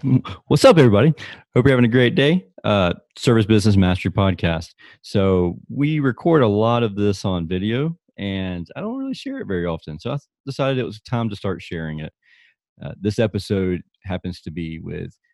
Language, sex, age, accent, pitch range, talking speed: English, male, 30-49, American, 90-115 Hz, 190 wpm